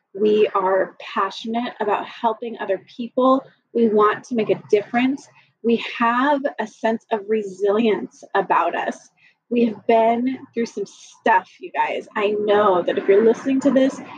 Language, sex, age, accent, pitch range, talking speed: English, female, 30-49, American, 205-245 Hz, 155 wpm